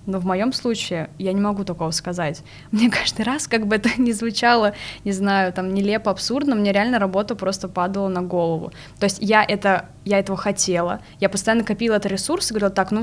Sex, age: female, 20-39